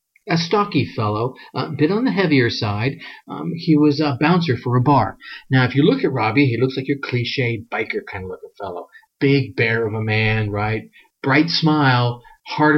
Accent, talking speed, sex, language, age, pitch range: American, 195 wpm, male, English, 40-59, 120-155 Hz